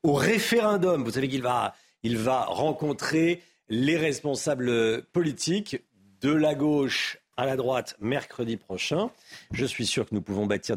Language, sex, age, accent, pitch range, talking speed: French, male, 40-59, French, 105-150 Hz, 150 wpm